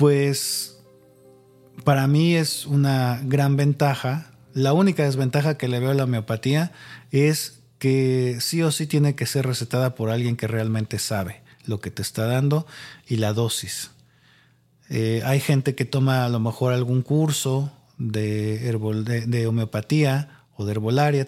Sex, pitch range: male, 115-140 Hz